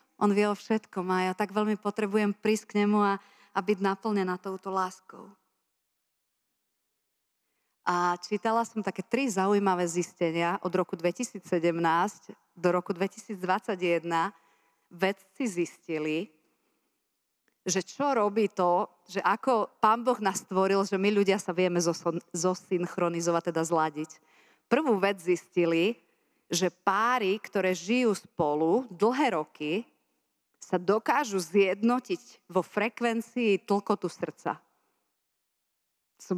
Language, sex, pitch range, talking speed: Slovak, female, 180-225 Hz, 115 wpm